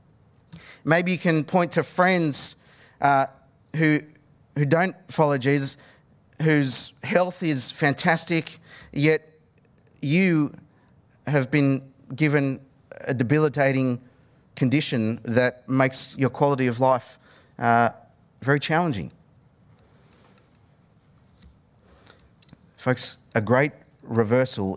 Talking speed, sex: 90 wpm, male